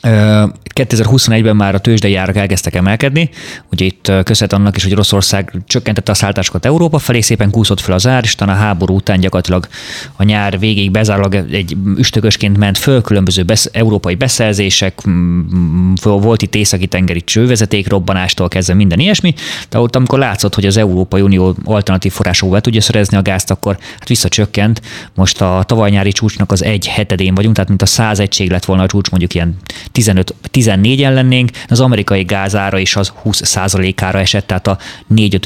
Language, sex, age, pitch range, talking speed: Hungarian, male, 20-39, 95-115 Hz, 165 wpm